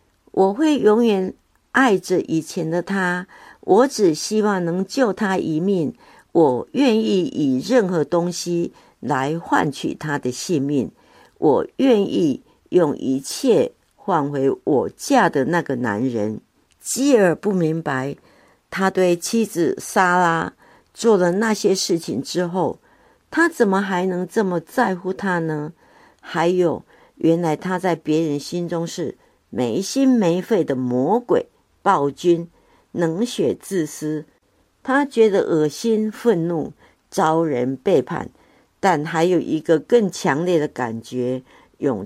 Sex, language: female, Chinese